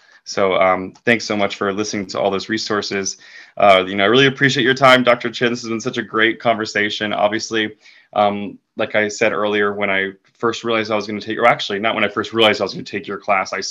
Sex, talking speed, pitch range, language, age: male, 255 wpm, 100-115 Hz, English, 20-39